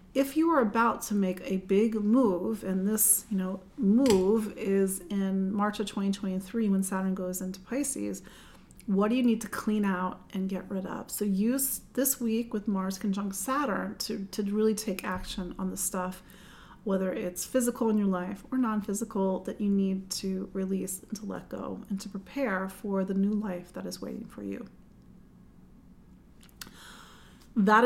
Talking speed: 175 wpm